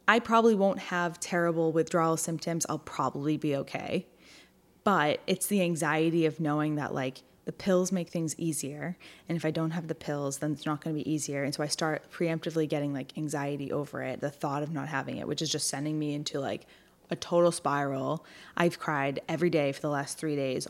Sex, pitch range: female, 150-185 Hz